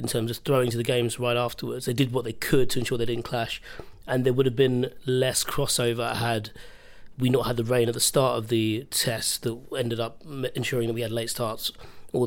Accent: British